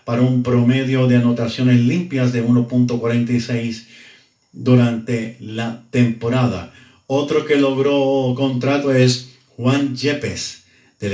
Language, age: Spanish, 50-69